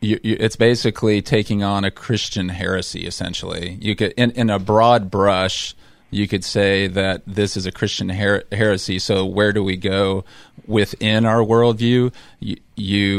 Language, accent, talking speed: English, American, 170 wpm